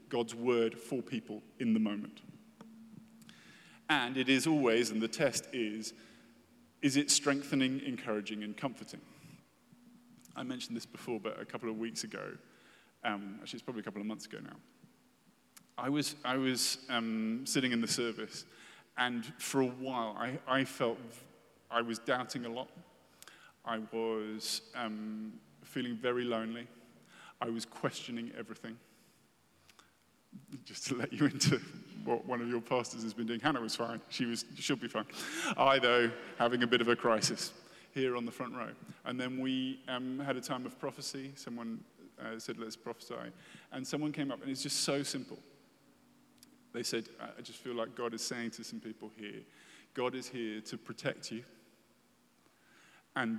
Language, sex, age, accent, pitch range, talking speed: English, male, 30-49, British, 115-135 Hz, 165 wpm